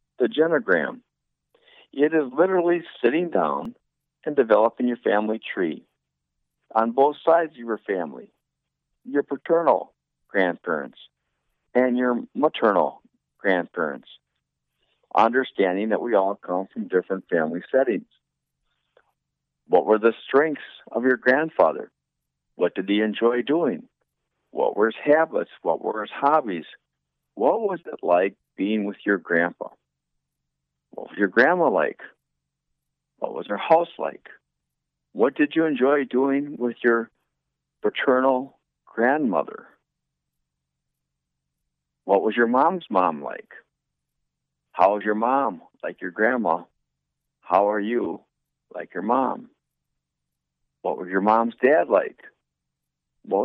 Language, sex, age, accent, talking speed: English, male, 50-69, American, 120 wpm